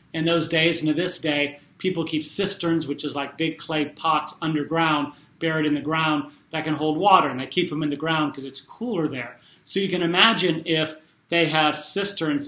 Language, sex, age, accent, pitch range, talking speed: English, male, 40-59, American, 145-170 Hz, 210 wpm